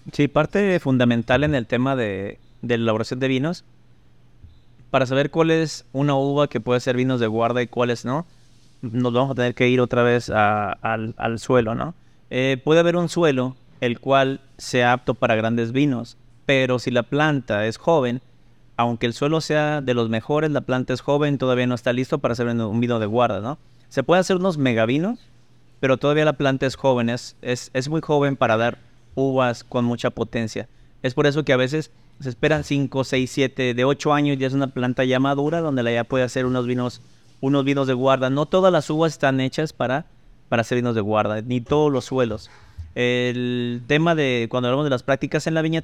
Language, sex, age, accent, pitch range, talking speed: Spanish, male, 30-49, Mexican, 120-145 Hz, 210 wpm